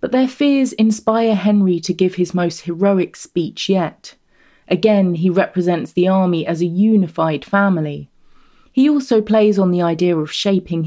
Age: 30-49